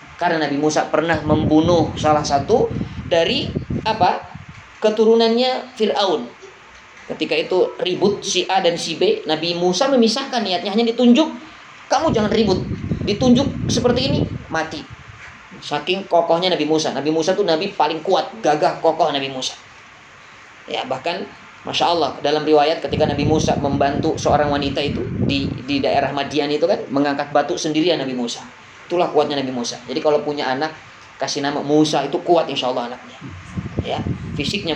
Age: 20-39